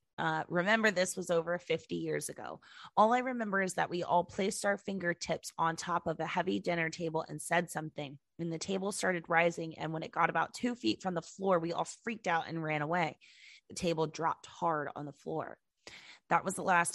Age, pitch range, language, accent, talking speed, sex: 20-39, 160-185 Hz, English, American, 215 wpm, female